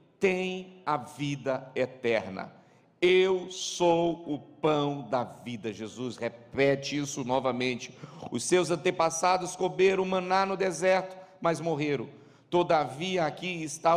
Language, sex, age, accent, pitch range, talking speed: Portuguese, male, 50-69, Brazilian, 150-190 Hz, 110 wpm